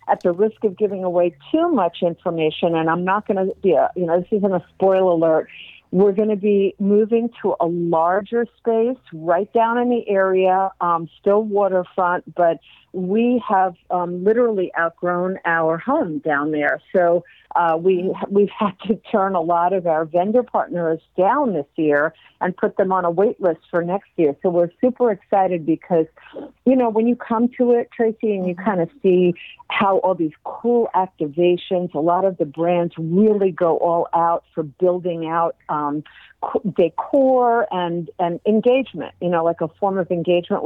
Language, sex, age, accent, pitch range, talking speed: English, female, 50-69, American, 170-205 Hz, 180 wpm